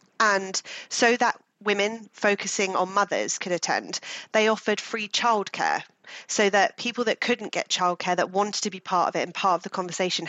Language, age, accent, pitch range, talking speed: English, 30-49, British, 180-210 Hz, 185 wpm